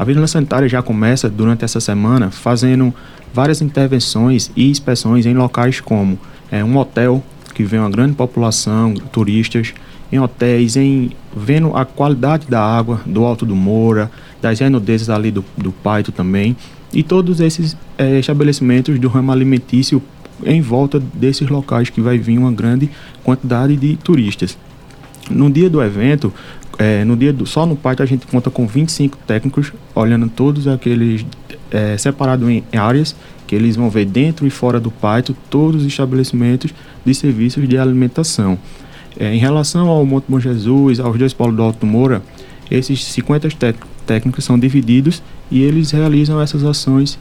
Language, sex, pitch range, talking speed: Portuguese, male, 115-140 Hz, 155 wpm